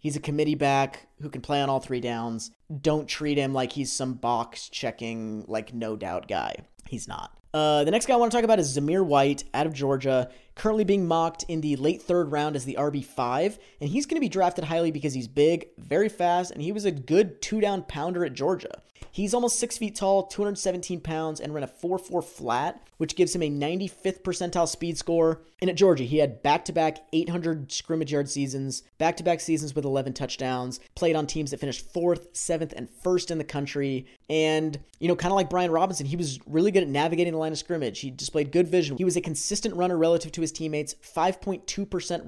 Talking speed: 225 wpm